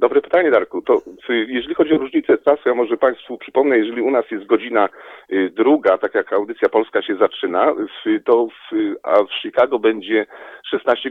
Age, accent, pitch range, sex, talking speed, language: 40-59, native, 330-435 Hz, male, 175 wpm, Polish